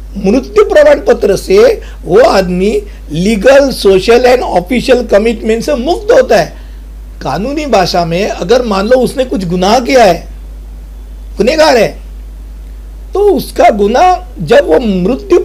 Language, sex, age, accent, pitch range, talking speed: Hindi, male, 60-79, native, 165-260 Hz, 130 wpm